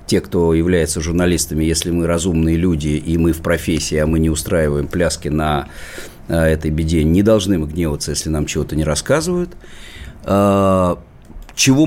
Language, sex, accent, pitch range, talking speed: Russian, male, native, 85-130 Hz, 150 wpm